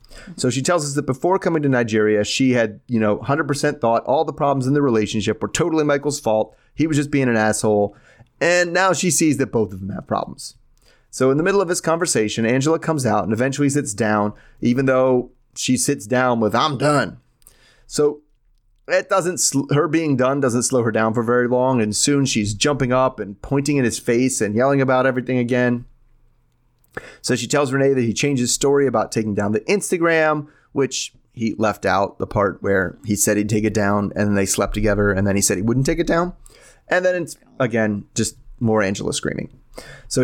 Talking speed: 210 wpm